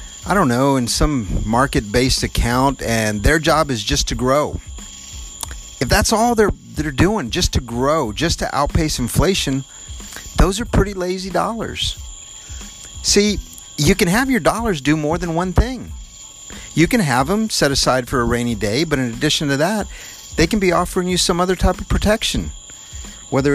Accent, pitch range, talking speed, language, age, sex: American, 115-165 Hz, 175 wpm, English, 50-69, male